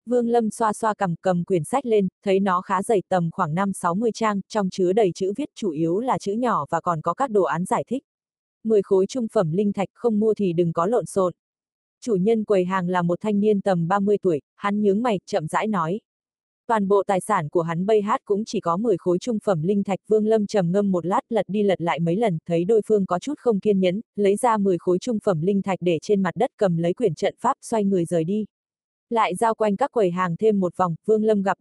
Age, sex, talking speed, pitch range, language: 20-39, female, 255 wpm, 180-220 Hz, Vietnamese